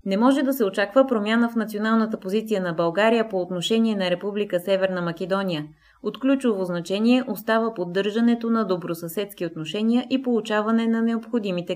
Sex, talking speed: female, 150 wpm